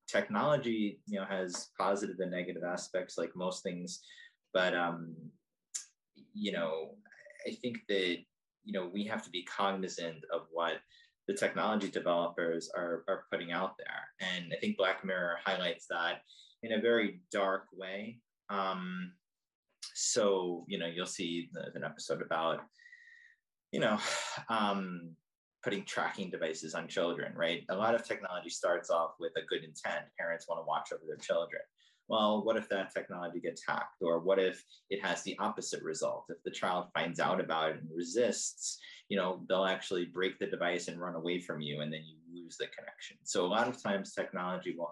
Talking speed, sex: 175 wpm, male